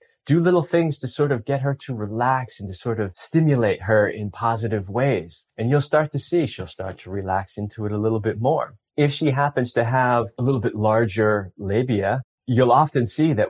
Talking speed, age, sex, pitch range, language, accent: 215 wpm, 20-39, male, 105-135 Hz, English, American